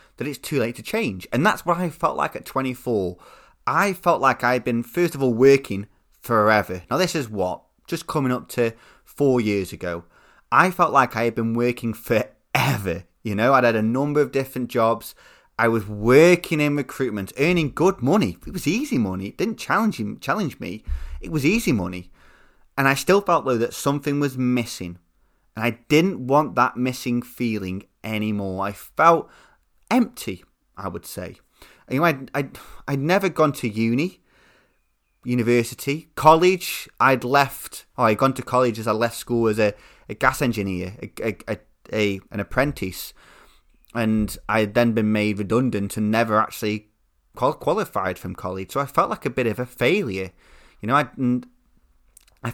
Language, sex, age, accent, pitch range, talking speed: English, male, 20-39, British, 105-140 Hz, 175 wpm